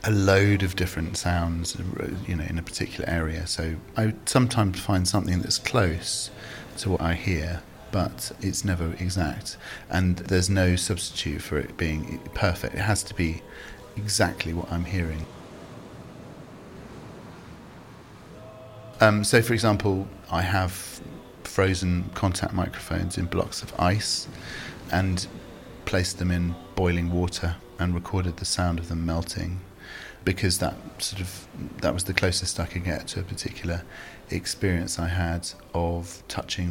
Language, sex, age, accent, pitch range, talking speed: English, male, 40-59, British, 85-100 Hz, 140 wpm